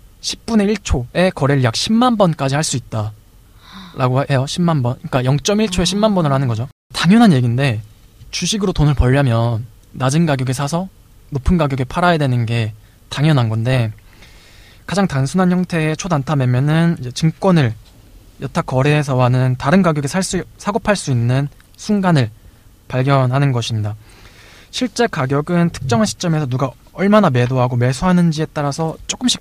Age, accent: 20-39, native